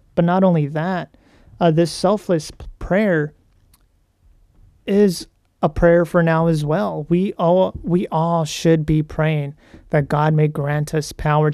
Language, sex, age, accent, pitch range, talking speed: English, male, 30-49, American, 135-165 Hz, 140 wpm